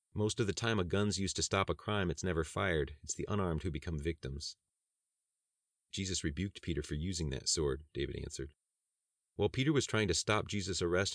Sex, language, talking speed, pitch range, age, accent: male, English, 200 wpm, 85-110 Hz, 30-49, American